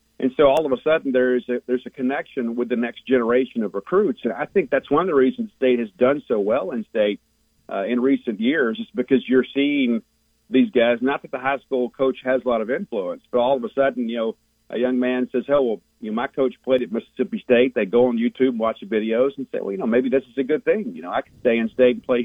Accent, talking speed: American, 280 wpm